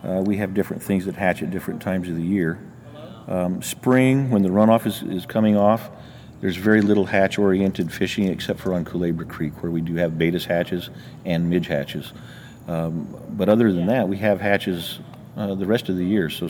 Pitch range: 90-100 Hz